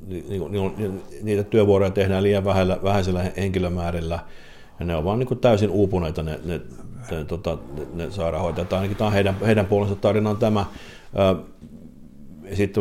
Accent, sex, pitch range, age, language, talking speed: native, male, 85-100 Hz, 50-69, Finnish, 155 wpm